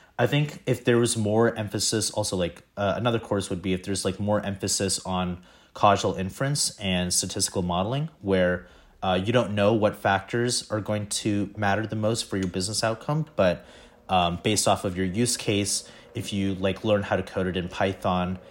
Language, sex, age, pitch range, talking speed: English, male, 30-49, 95-115 Hz, 195 wpm